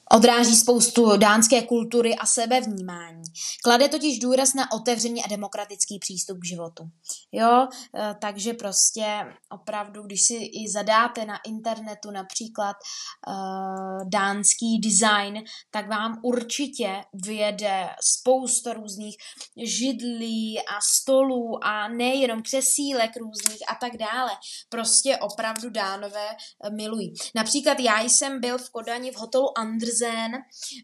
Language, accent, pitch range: Czech, native, 210-245 Hz